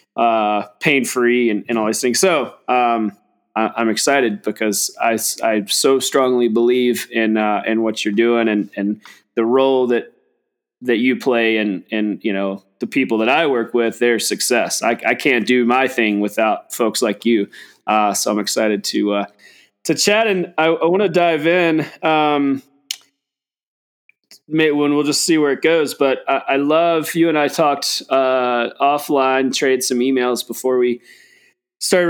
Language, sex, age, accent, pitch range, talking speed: English, male, 20-39, American, 115-150 Hz, 170 wpm